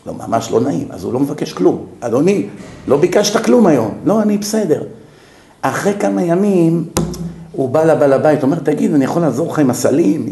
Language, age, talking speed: Hebrew, 50-69, 190 wpm